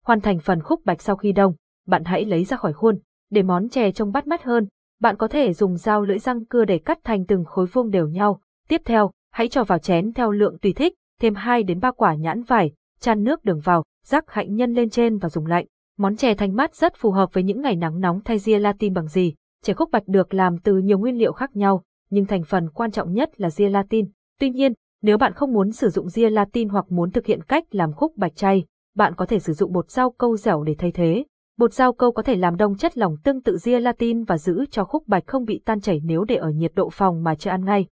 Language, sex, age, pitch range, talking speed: Vietnamese, female, 20-39, 185-235 Hz, 260 wpm